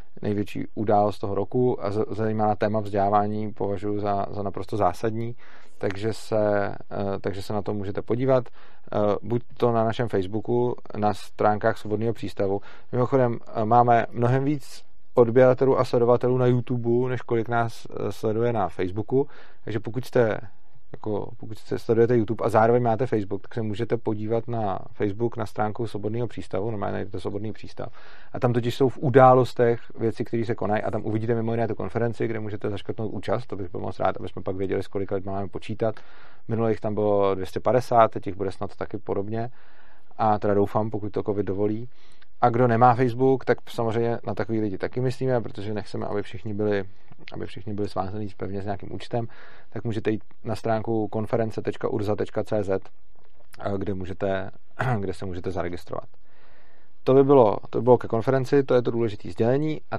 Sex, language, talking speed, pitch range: male, Czech, 170 wpm, 105-120 Hz